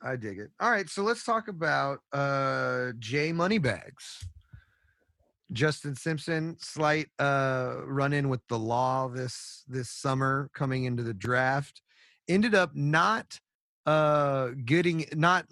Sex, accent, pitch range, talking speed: male, American, 115-145 Hz, 130 wpm